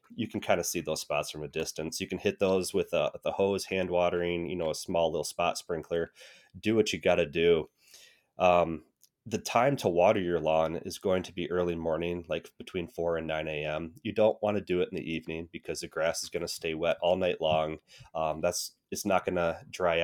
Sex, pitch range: male, 80-95 Hz